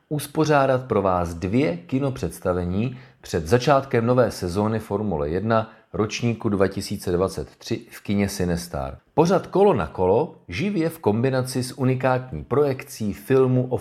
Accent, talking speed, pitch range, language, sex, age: native, 120 wpm, 100-130 Hz, Czech, male, 40-59